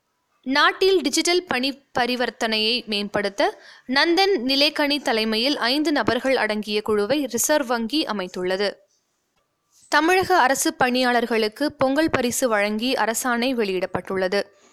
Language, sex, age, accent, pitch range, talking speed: Tamil, female, 20-39, native, 220-305 Hz, 95 wpm